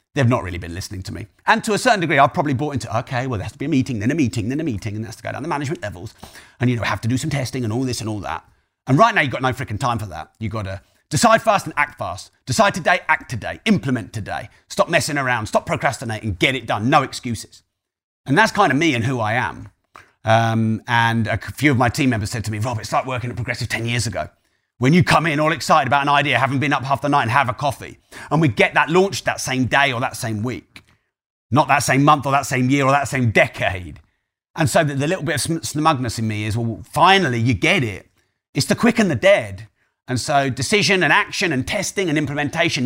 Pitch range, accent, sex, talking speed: 115-155 Hz, British, male, 265 wpm